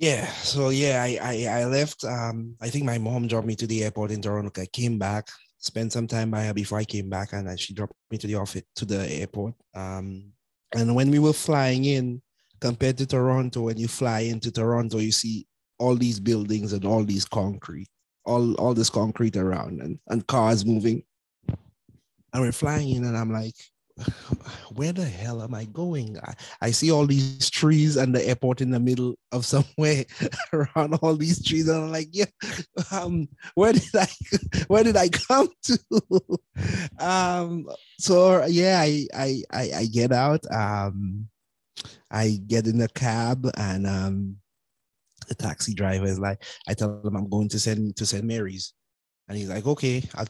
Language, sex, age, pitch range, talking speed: English, male, 30-49, 105-135 Hz, 185 wpm